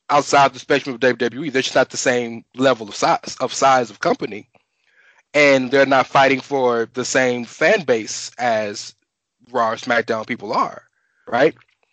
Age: 20-39